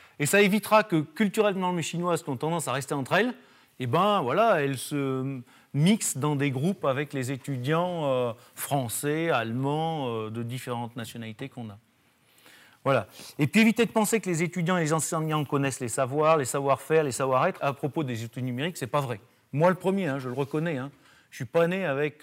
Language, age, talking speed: French, 40-59, 210 wpm